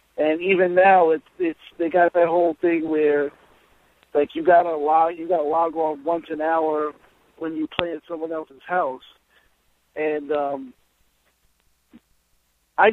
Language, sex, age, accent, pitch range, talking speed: English, male, 50-69, American, 150-185 Hz, 150 wpm